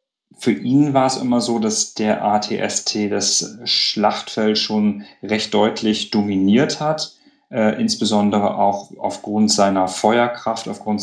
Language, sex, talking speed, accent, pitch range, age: German, male, 125 wpm, German, 100-115 Hz, 40-59